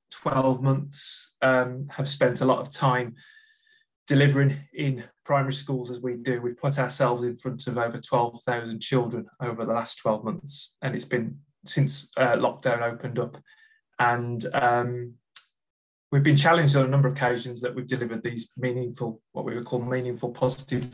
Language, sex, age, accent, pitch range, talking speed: English, male, 20-39, British, 120-140 Hz, 170 wpm